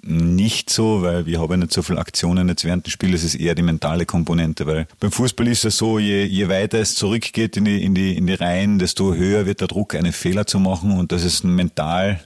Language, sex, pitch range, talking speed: German, male, 90-100 Hz, 245 wpm